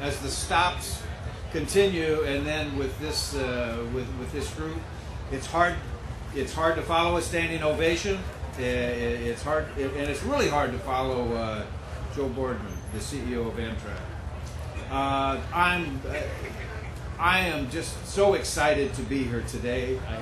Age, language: 60-79, English